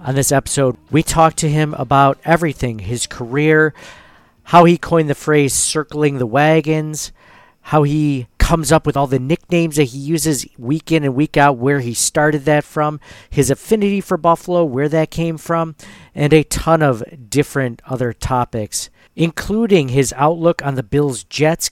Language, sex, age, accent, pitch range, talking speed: English, male, 40-59, American, 135-160 Hz, 170 wpm